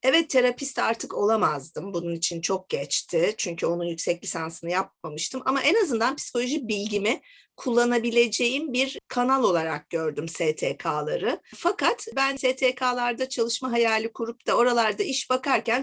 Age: 50-69